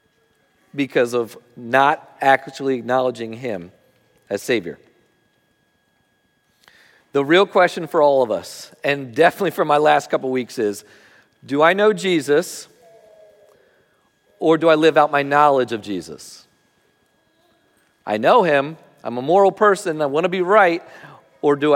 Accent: American